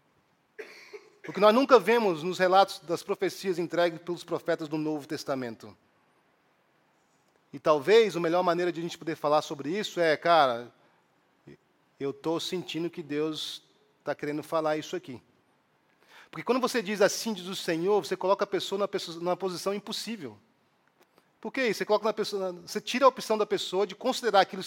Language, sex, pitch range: English, male, 185-250 Hz